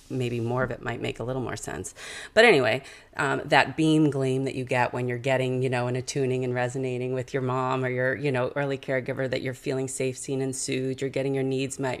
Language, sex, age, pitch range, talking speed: English, female, 30-49, 125-140 Hz, 245 wpm